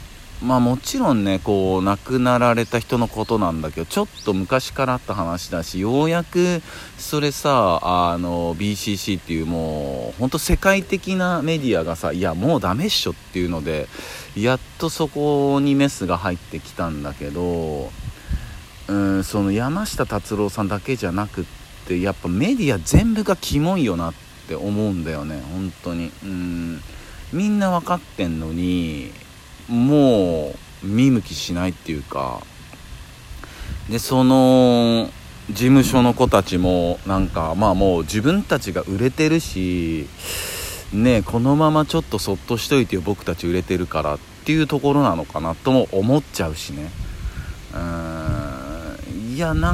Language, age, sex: Japanese, 50-69, male